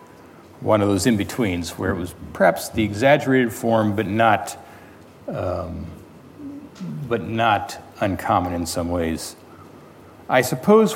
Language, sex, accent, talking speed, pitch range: English, male, American, 120 wpm, 95-130 Hz